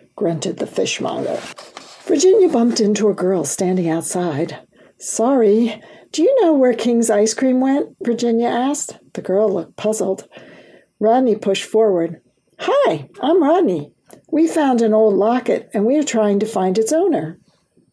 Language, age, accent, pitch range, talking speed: English, 60-79, American, 190-280 Hz, 145 wpm